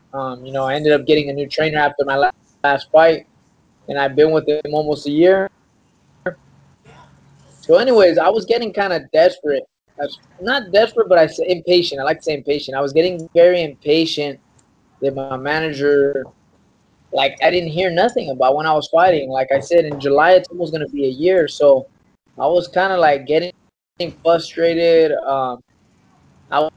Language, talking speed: English, 185 wpm